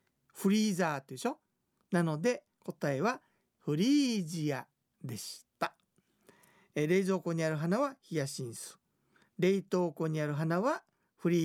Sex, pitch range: male, 160-235 Hz